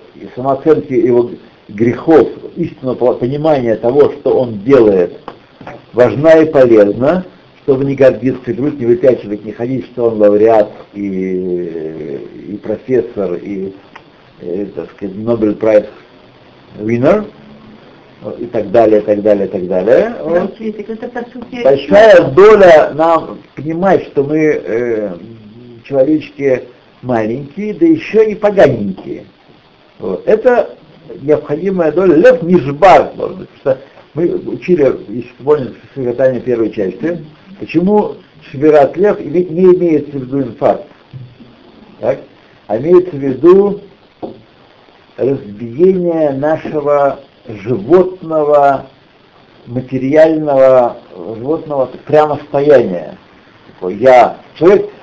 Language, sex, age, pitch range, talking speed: Russian, male, 60-79, 120-180 Hz, 100 wpm